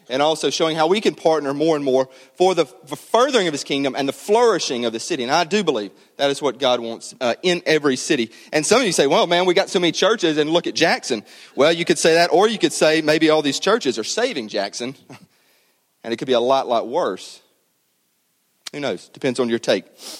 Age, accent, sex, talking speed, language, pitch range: 30-49, American, male, 245 wpm, English, 125-165 Hz